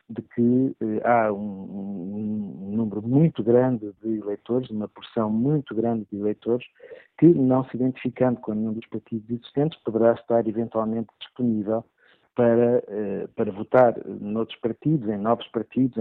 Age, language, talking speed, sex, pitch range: 50-69, Portuguese, 150 wpm, male, 110-125 Hz